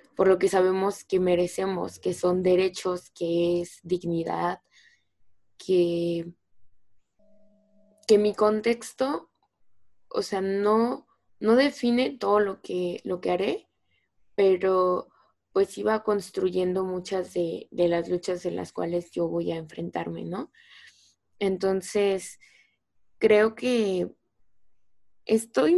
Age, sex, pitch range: 20-39, female, 180-205 Hz